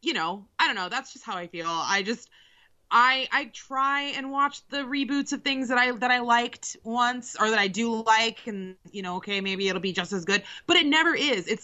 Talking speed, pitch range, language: 240 wpm, 185-250 Hz, English